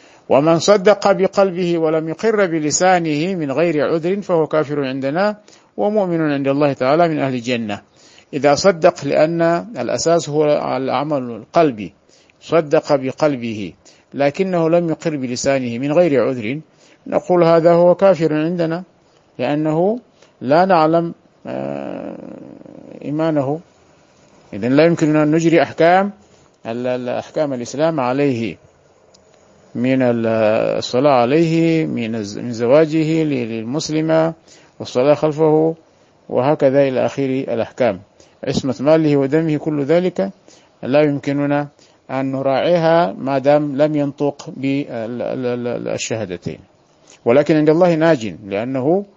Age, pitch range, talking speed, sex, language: 50-69, 130-170 Hz, 105 wpm, male, Arabic